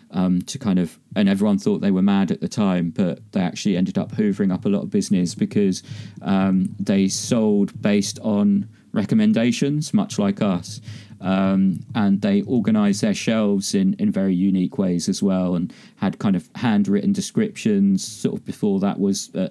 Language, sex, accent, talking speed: English, male, British, 180 wpm